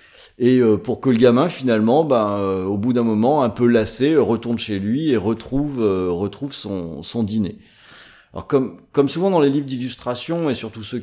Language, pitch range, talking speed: French, 105-140 Hz, 190 wpm